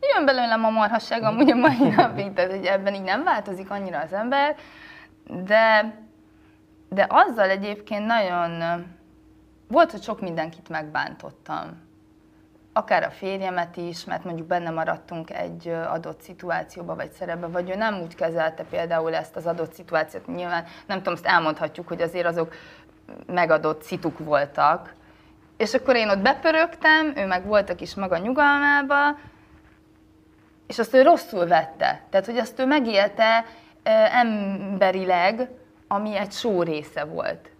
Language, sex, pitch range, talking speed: Hungarian, female, 170-230 Hz, 135 wpm